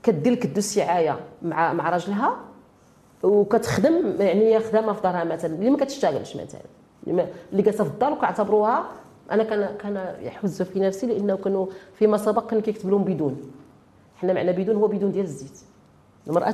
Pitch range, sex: 190-240 Hz, female